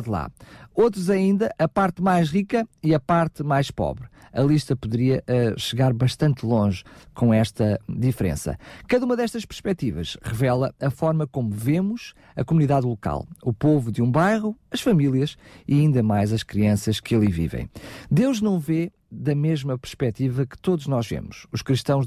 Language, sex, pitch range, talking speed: Portuguese, male, 115-165 Hz, 165 wpm